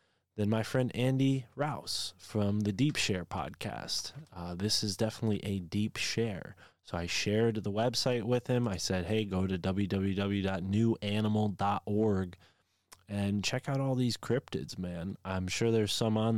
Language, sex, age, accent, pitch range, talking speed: English, male, 20-39, American, 95-115 Hz, 155 wpm